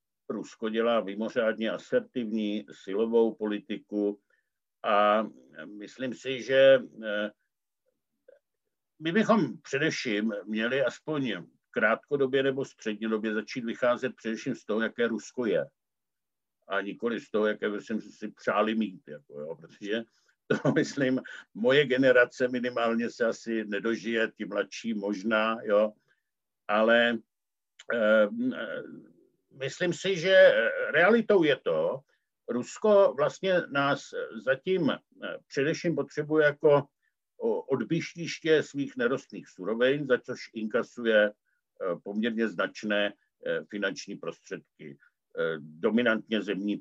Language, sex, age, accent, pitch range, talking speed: Czech, male, 60-79, native, 110-170 Hz, 100 wpm